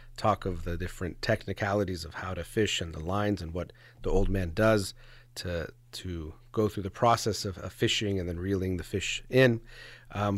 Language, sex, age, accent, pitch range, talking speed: English, male, 30-49, American, 95-120 Hz, 195 wpm